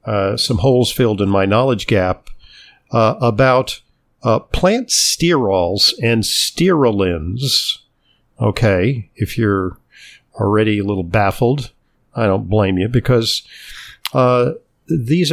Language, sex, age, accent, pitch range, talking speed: English, male, 50-69, American, 105-130 Hz, 115 wpm